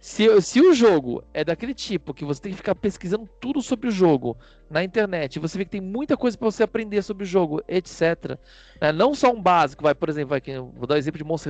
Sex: male